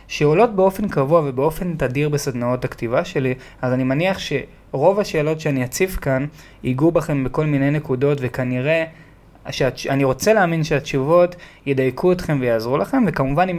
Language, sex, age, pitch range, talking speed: Hebrew, male, 20-39, 130-160 Hz, 140 wpm